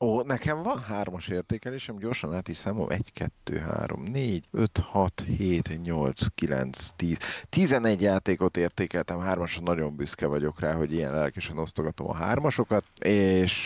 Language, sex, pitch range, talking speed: Hungarian, male, 85-110 Hz, 150 wpm